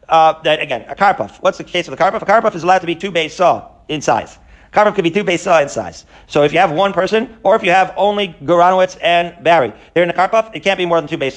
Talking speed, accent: 310 wpm, American